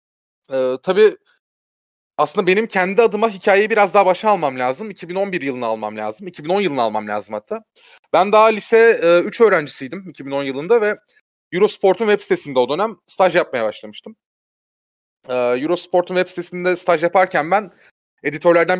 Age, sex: 30-49, male